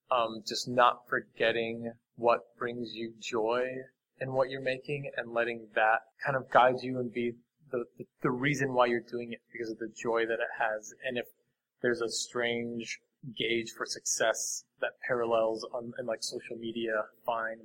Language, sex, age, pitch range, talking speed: English, male, 20-39, 115-120 Hz, 175 wpm